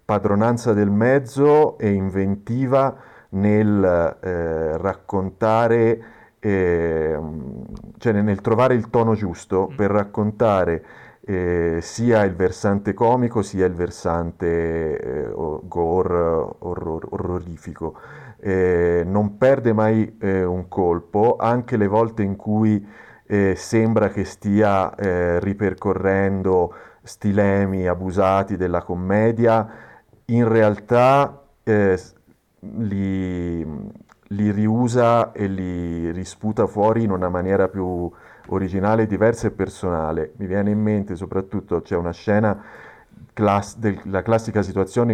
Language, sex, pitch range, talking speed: Italian, male, 90-110 Hz, 105 wpm